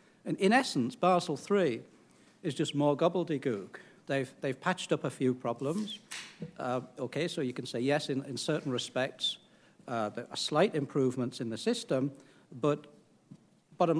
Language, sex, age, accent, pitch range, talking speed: English, male, 60-79, British, 130-165 Hz, 155 wpm